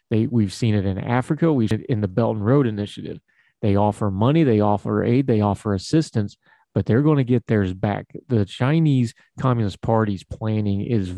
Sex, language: male, English